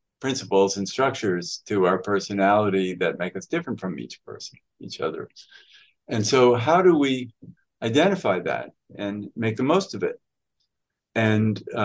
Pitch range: 100-125 Hz